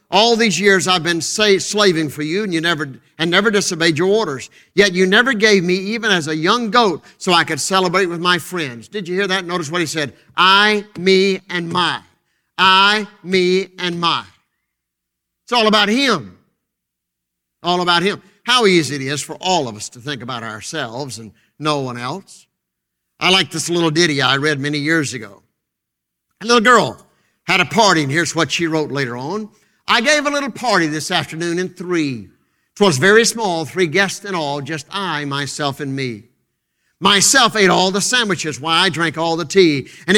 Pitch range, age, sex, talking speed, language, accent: 155-205 Hz, 50-69, male, 190 wpm, English, American